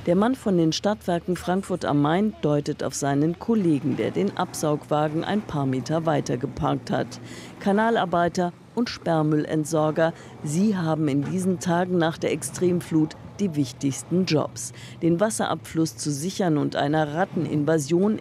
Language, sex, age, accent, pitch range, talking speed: German, female, 50-69, German, 150-185 Hz, 140 wpm